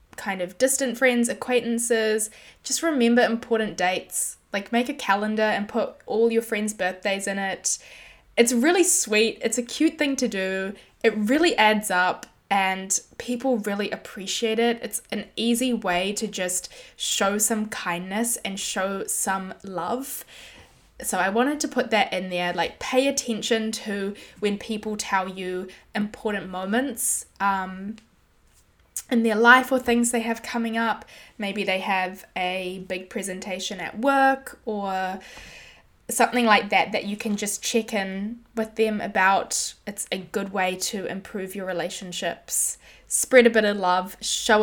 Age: 10-29